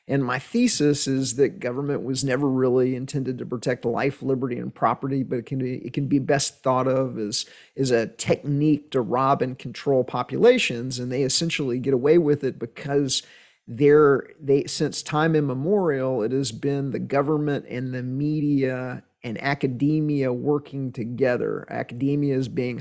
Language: English